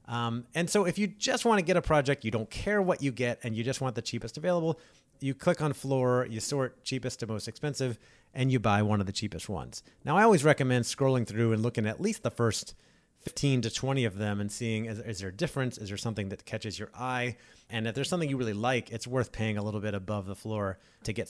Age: 30-49